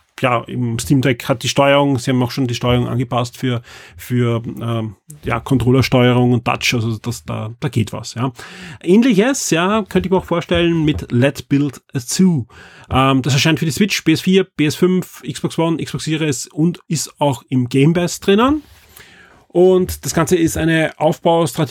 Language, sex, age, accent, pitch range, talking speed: German, male, 30-49, German, 125-165 Hz, 180 wpm